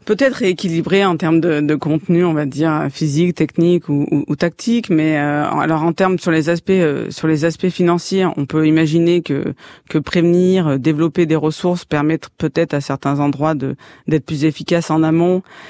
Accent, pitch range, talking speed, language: French, 150-180 Hz, 185 wpm, French